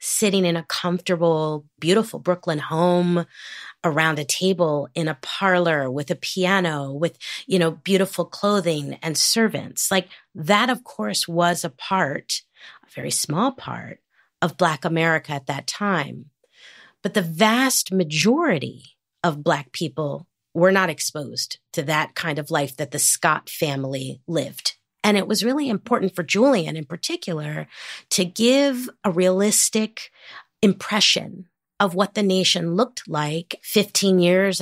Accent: American